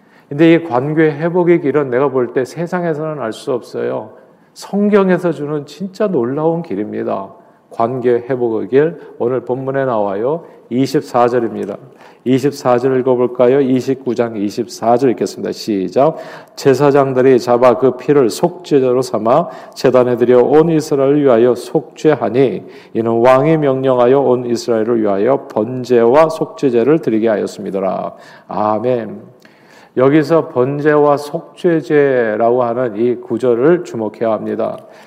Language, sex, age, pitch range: Korean, male, 40-59, 120-155 Hz